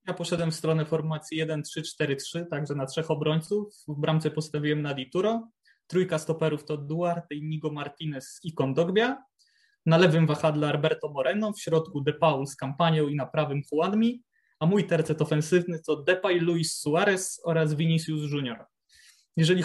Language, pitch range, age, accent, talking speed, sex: Polish, 155-175 Hz, 20-39, native, 155 wpm, male